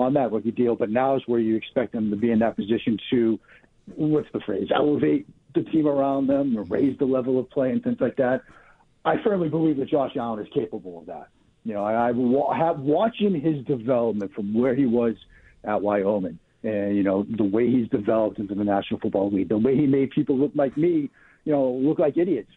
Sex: male